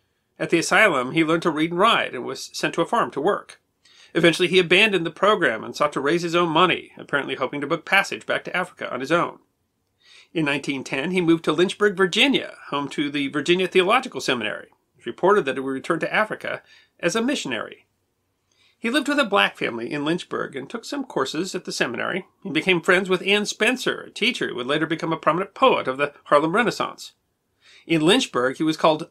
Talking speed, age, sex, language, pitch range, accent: 215 wpm, 40-59, male, English, 145-195 Hz, American